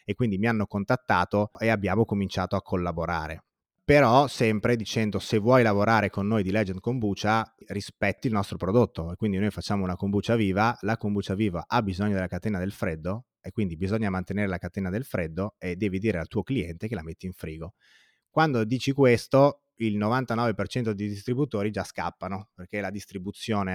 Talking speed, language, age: 180 wpm, Italian, 30-49